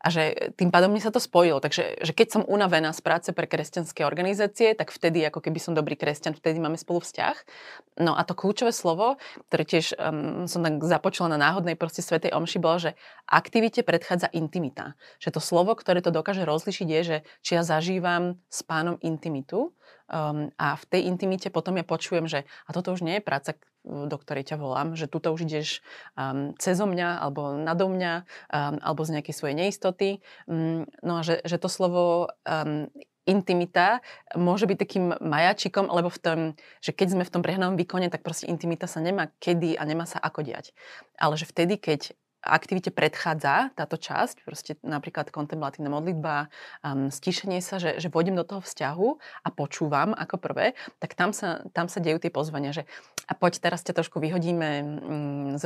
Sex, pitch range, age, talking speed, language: female, 155-180 Hz, 30-49, 185 wpm, Slovak